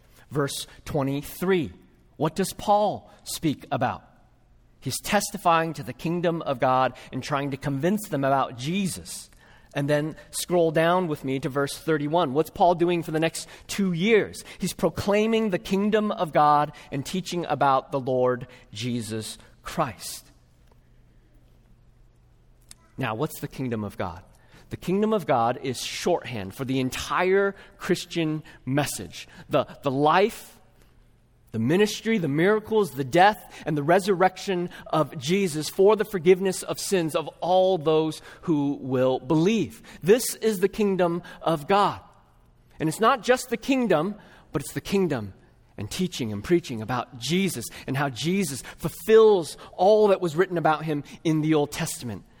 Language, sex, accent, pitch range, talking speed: English, male, American, 130-185 Hz, 150 wpm